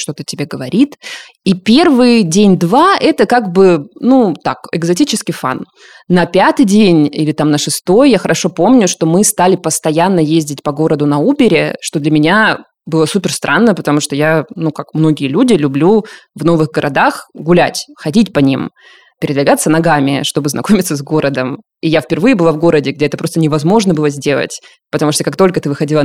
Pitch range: 150-200 Hz